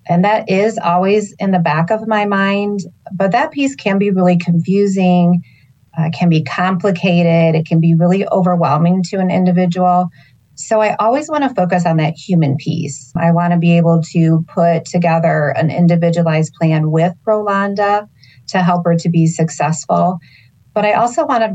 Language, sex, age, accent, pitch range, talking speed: English, female, 30-49, American, 160-180 Hz, 175 wpm